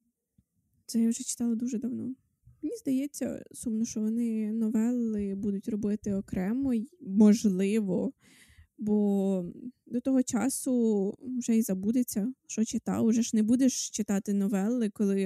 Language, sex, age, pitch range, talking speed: Ukrainian, female, 20-39, 205-255 Hz, 125 wpm